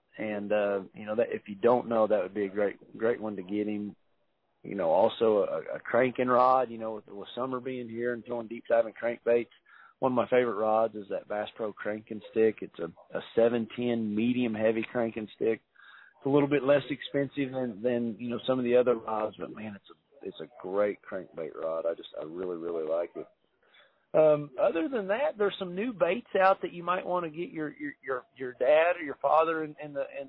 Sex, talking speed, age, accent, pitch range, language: male, 225 wpm, 40-59, American, 110-140 Hz, English